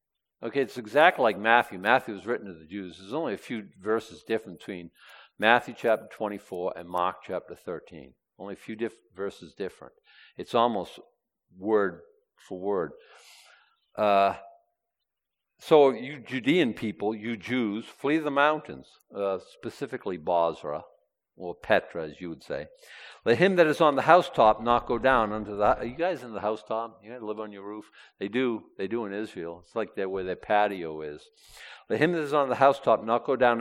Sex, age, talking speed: male, 50-69, 180 wpm